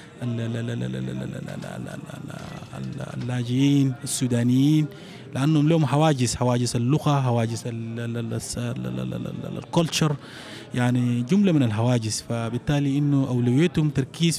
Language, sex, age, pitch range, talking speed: French, male, 30-49, 120-145 Hz, 55 wpm